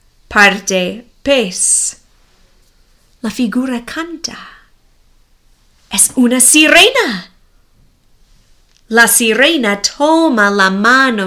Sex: female